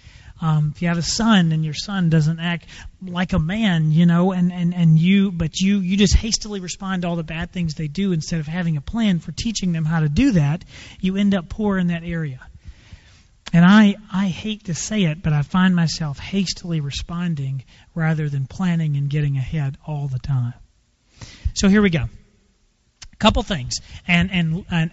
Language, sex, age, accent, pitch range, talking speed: English, male, 40-59, American, 155-195 Hz, 195 wpm